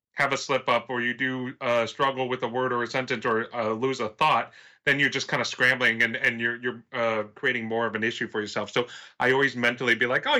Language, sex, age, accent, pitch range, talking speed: English, male, 30-49, American, 115-140 Hz, 260 wpm